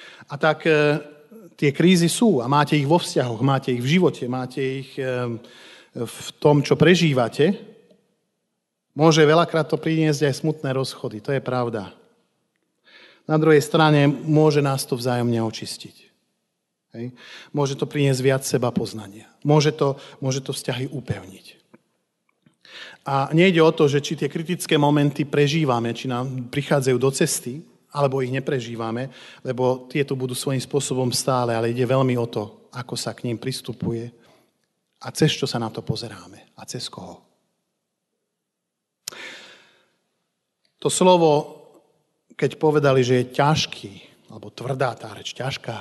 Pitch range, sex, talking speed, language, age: 125-150 Hz, male, 140 wpm, Slovak, 40-59